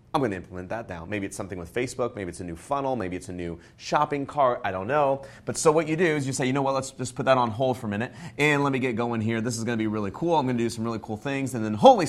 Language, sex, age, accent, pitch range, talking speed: English, male, 30-49, American, 105-135 Hz, 330 wpm